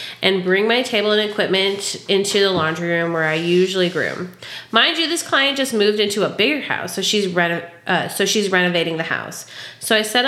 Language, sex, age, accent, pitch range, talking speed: English, female, 30-49, American, 180-245 Hz, 210 wpm